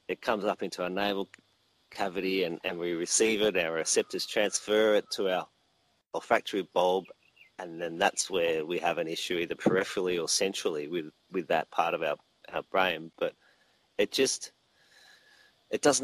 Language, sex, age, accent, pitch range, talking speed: English, male, 30-49, Australian, 95-115 Hz, 170 wpm